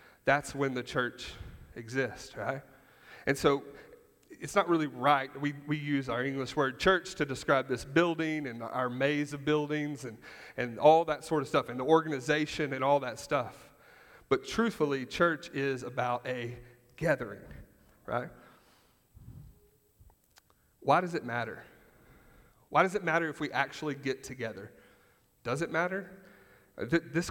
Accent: American